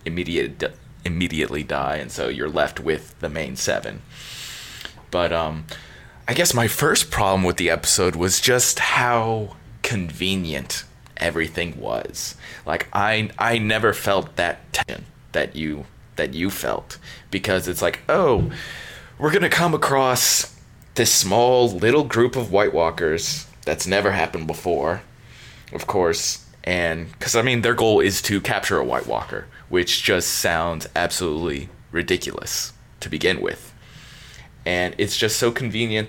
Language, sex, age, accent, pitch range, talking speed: English, male, 20-39, American, 90-115 Hz, 145 wpm